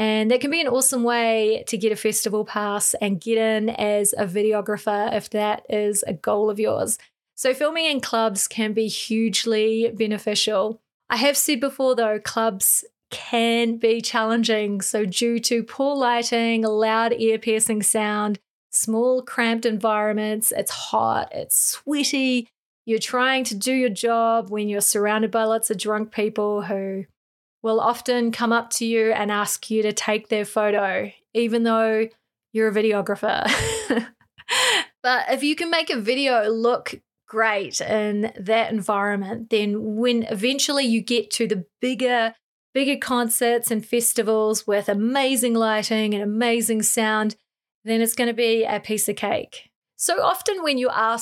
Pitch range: 215-235 Hz